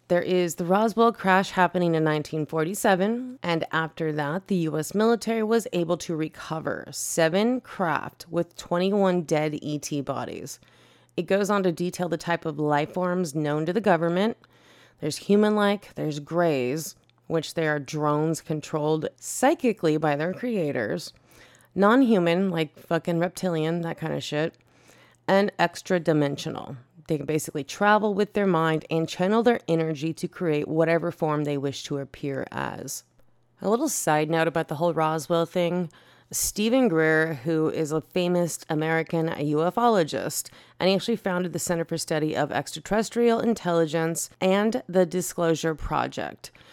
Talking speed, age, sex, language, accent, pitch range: 145 wpm, 30-49, female, English, American, 155-190 Hz